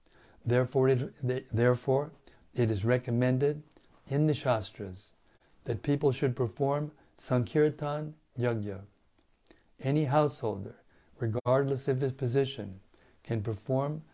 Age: 60-79